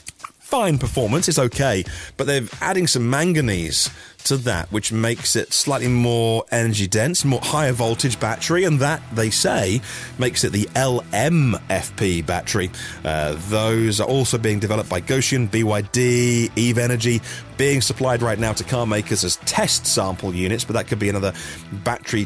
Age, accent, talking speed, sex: 30-49, British, 155 wpm, male